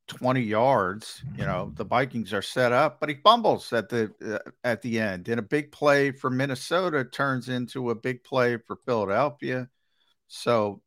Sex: male